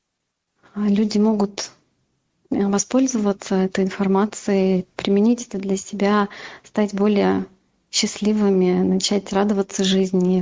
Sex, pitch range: female, 190-210 Hz